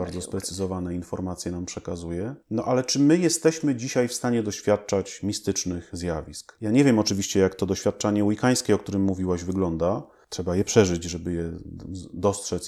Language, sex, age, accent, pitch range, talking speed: Polish, male, 30-49, native, 90-115 Hz, 160 wpm